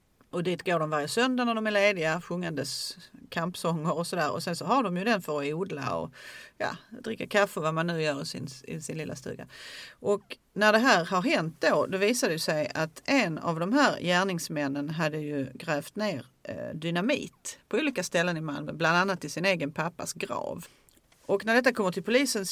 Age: 40-59